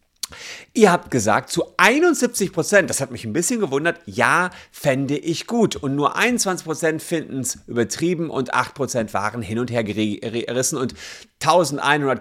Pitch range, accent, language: 120-155 Hz, German, German